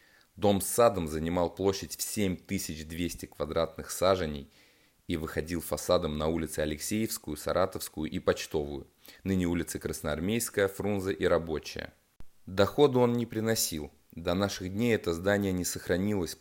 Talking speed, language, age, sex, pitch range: 130 wpm, Russian, 20-39, male, 80-95 Hz